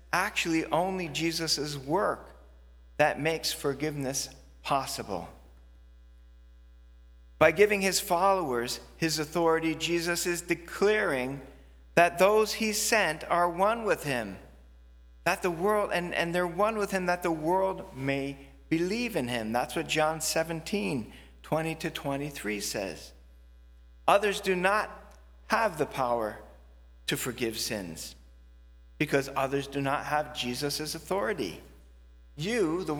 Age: 40-59